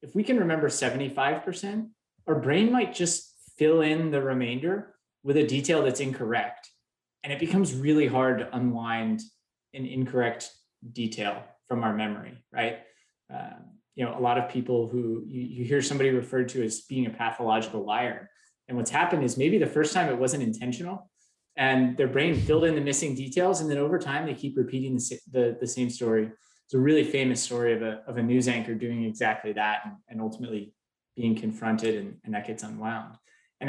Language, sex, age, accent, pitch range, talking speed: English, male, 20-39, American, 110-135 Hz, 195 wpm